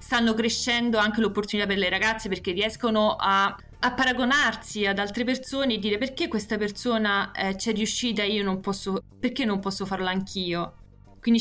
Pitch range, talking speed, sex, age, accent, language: 190-220 Hz, 175 wpm, female, 20-39, native, Italian